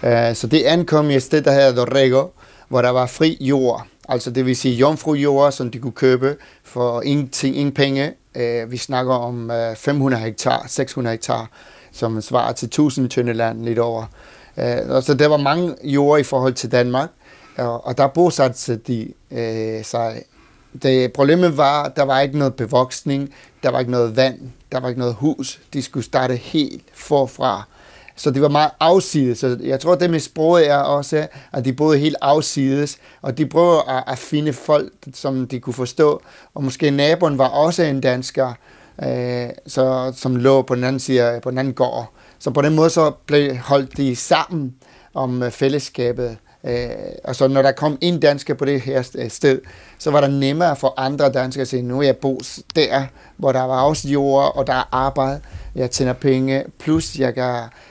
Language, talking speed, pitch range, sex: Danish, 180 wpm, 125-145 Hz, male